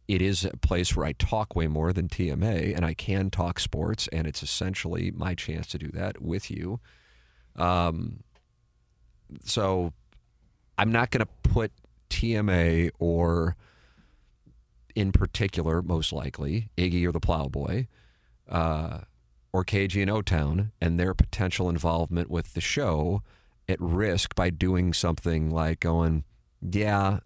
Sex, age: male, 40-59